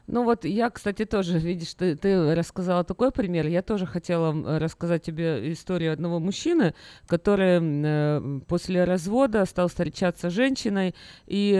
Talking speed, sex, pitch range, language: 145 wpm, female, 155-195 Hz, Russian